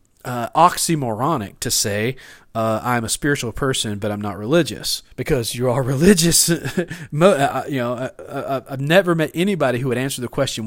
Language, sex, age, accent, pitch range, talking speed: English, male, 40-59, American, 110-150 Hz, 160 wpm